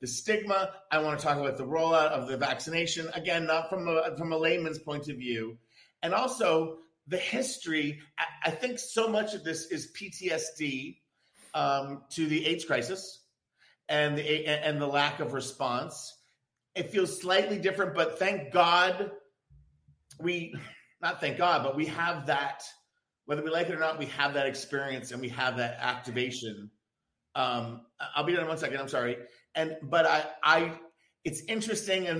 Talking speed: 170 wpm